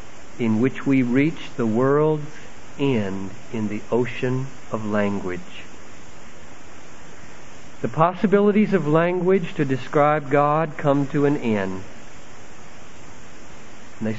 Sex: male